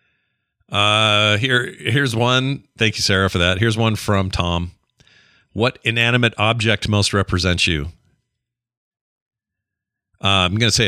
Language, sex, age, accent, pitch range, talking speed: English, male, 40-59, American, 85-115 Hz, 125 wpm